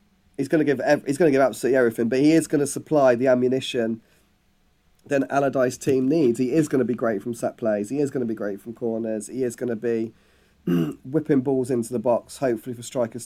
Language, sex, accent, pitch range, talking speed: English, male, British, 110-135 Hz, 215 wpm